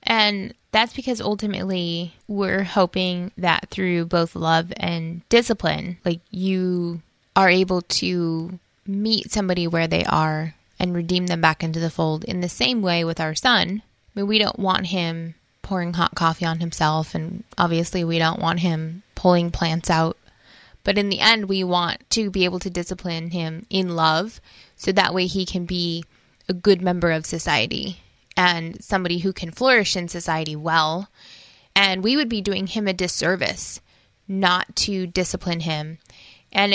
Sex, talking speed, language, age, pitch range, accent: female, 165 wpm, English, 10-29, 165-195 Hz, American